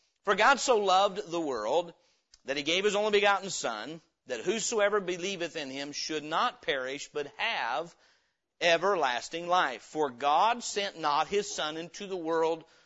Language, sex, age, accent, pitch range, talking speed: English, male, 50-69, American, 155-200 Hz, 160 wpm